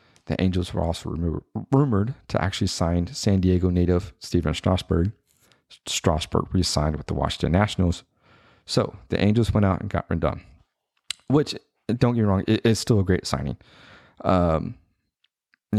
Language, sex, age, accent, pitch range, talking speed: English, male, 30-49, American, 85-100 Hz, 145 wpm